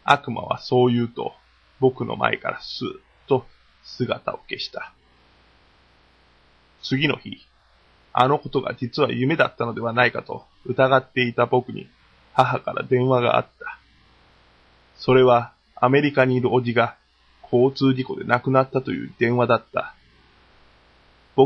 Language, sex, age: Japanese, male, 20-39